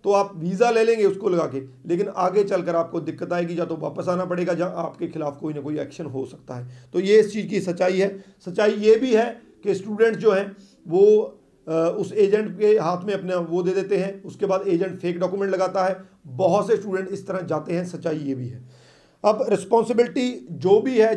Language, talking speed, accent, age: Hindi, 225 wpm, native, 40-59